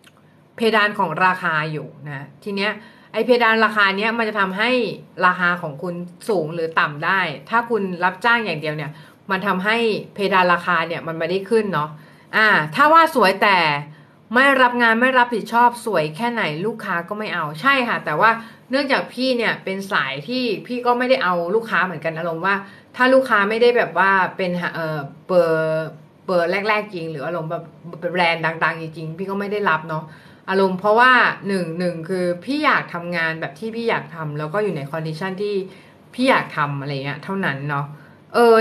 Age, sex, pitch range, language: 30-49, female, 165-220 Hz, Thai